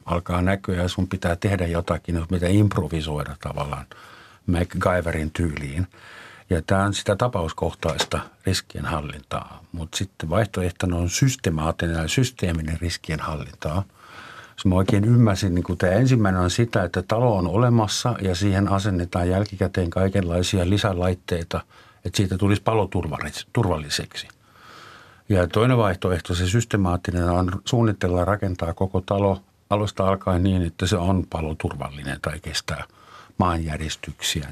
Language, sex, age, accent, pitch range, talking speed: Finnish, male, 50-69, native, 85-105 Hz, 125 wpm